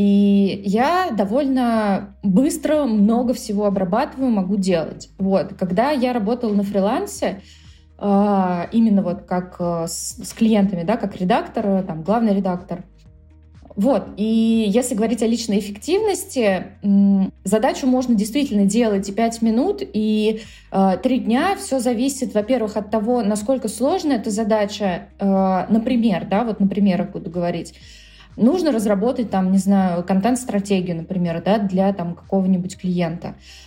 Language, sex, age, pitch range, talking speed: Russian, female, 20-39, 190-225 Hz, 125 wpm